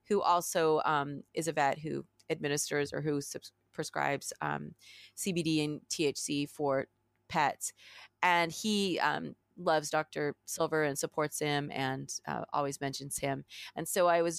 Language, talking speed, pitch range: English, 150 wpm, 150-180 Hz